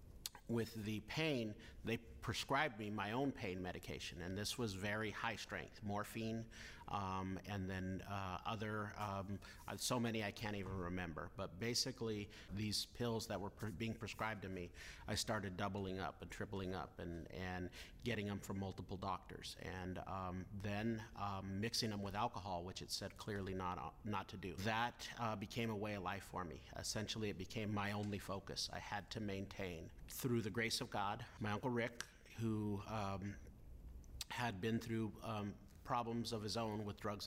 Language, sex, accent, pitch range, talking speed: English, male, American, 95-110 Hz, 175 wpm